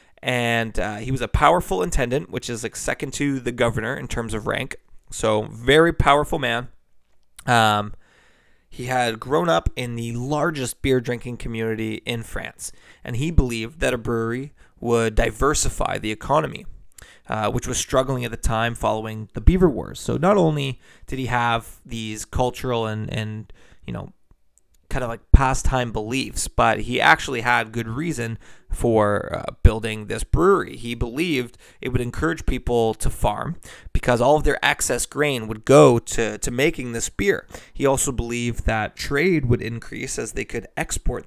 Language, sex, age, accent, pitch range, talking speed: English, male, 20-39, American, 110-130 Hz, 170 wpm